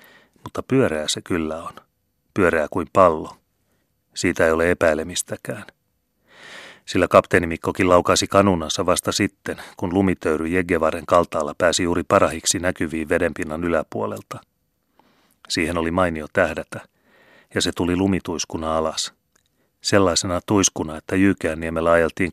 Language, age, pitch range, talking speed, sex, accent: Finnish, 30-49, 80-95 Hz, 115 wpm, male, native